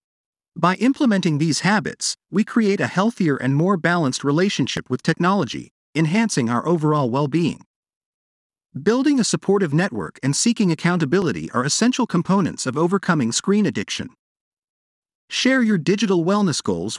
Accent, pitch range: American, 145-205 Hz